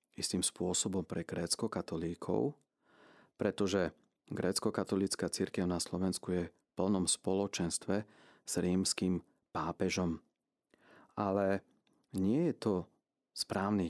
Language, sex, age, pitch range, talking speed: Slovak, male, 40-59, 90-100 Hz, 95 wpm